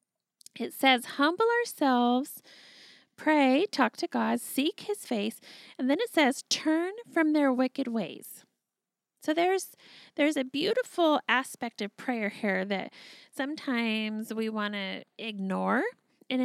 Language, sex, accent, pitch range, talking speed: English, female, American, 220-275 Hz, 130 wpm